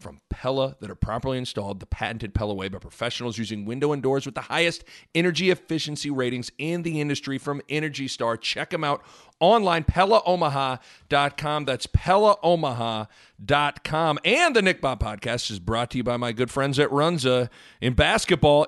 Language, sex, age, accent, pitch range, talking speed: English, male, 40-59, American, 115-160 Hz, 165 wpm